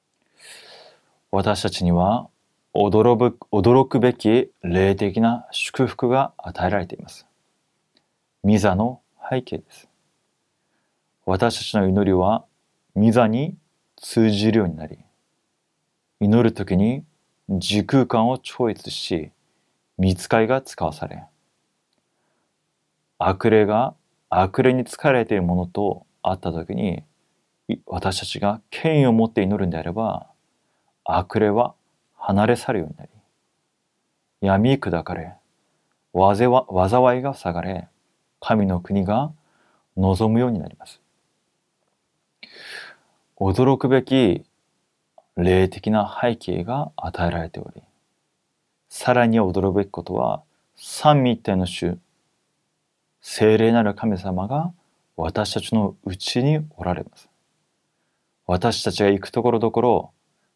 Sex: male